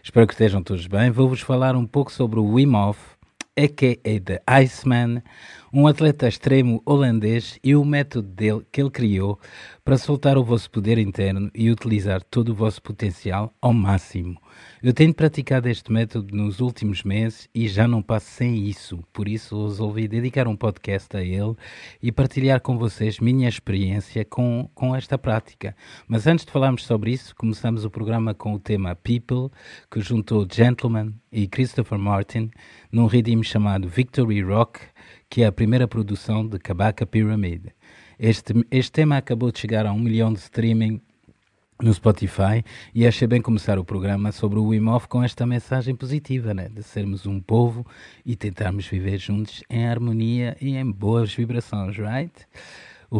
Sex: male